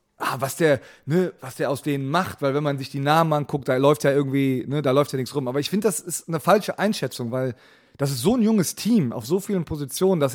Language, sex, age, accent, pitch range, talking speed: German, male, 30-49, German, 135-180 Hz, 265 wpm